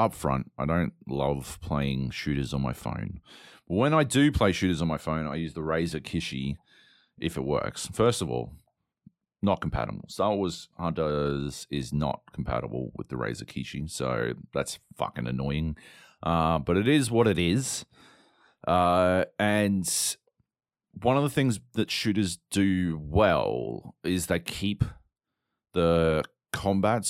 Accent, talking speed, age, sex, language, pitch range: Australian, 150 wpm, 30-49, male, English, 75-110 Hz